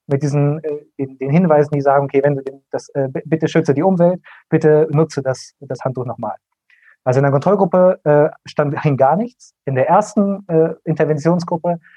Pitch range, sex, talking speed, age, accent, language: 140-175 Hz, male, 180 wpm, 30-49, German, German